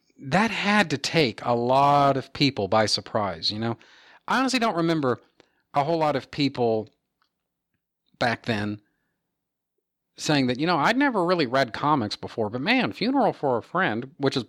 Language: English